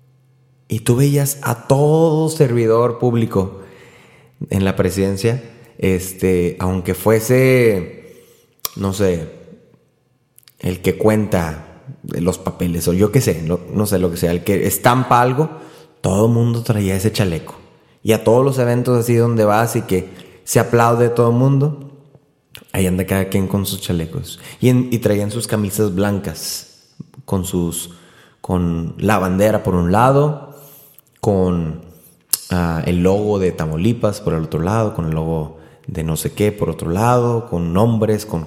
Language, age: Spanish, 20-39